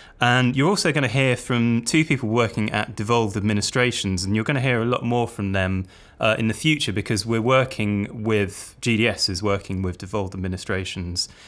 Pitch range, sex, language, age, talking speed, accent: 95-115 Hz, male, English, 20-39, 195 wpm, British